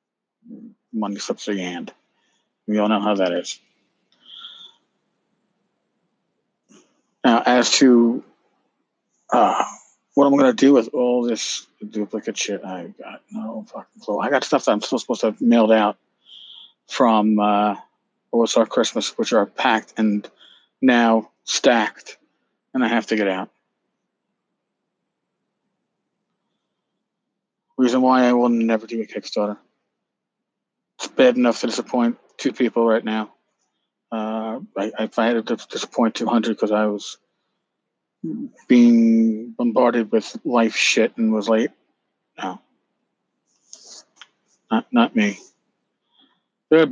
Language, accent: English, American